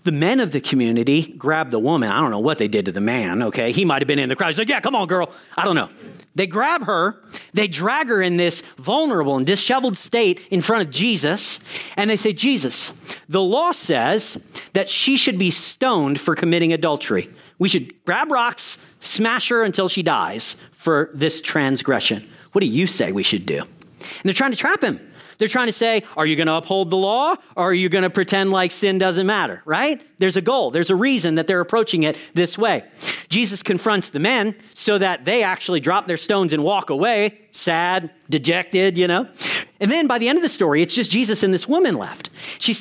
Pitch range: 170-230 Hz